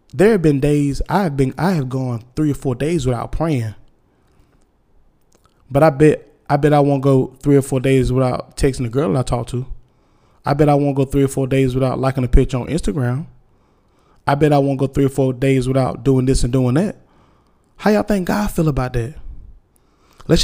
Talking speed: 210 wpm